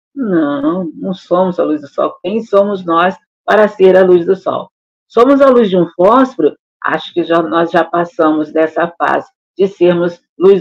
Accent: Brazilian